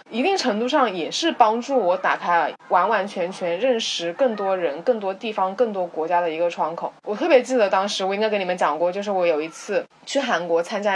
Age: 20-39